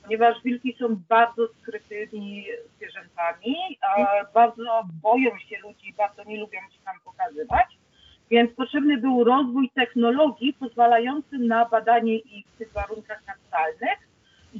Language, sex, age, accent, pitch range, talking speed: Polish, female, 40-59, native, 195-250 Hz, 125 wpm